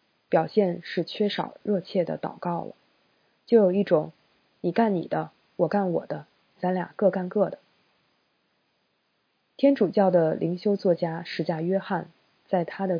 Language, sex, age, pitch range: Chinese, female, 20-39, 170-200 Hz